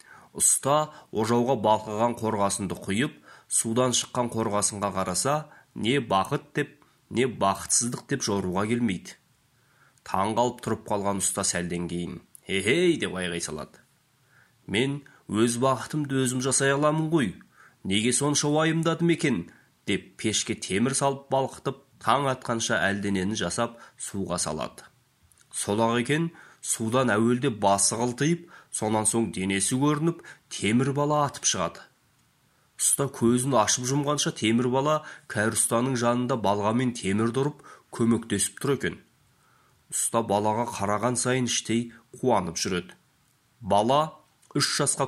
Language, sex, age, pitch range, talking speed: Russian, male, 30-49, 105-135 Hz, 100 wpm